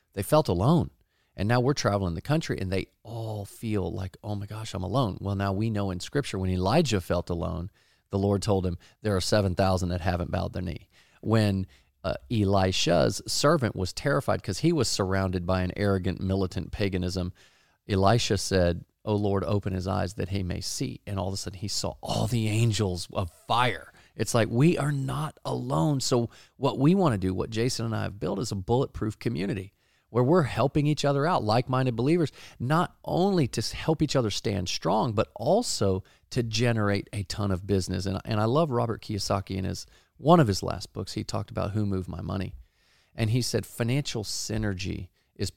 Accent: American